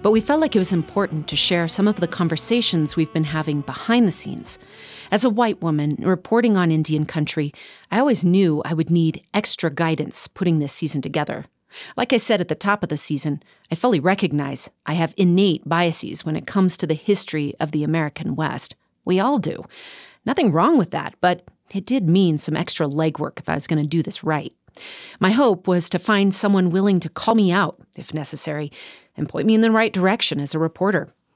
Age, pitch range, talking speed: 40-59, 160-215 Hz, 210 wpm